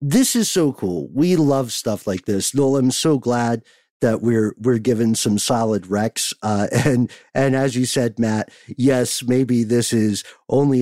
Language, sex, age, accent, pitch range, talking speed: English, male, 50-69, American, 100-125 Hz, 175 wpm